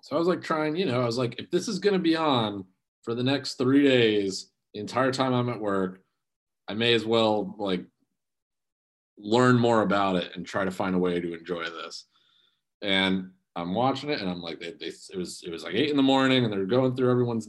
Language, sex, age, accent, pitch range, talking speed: English, male, 30-49, American, 95-130 Hz, 235 wpm